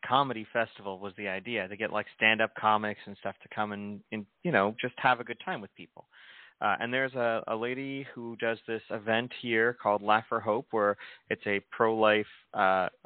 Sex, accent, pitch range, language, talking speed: male, American, 105-125 Hz, English, 205 wpm